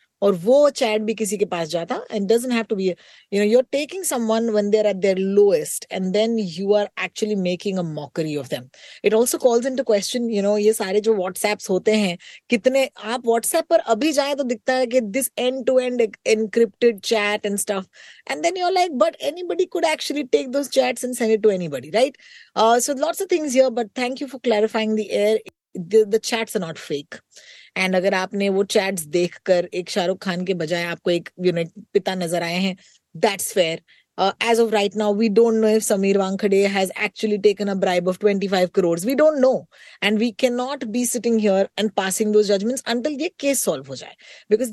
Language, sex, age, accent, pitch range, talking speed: Hindi, female, 20-39, native, 190-250 Hz, 95 wpm